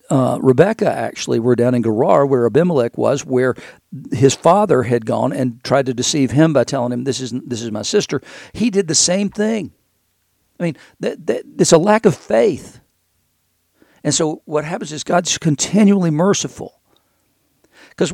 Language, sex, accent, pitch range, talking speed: English, male, American, 125-155 Hz, 170 wpm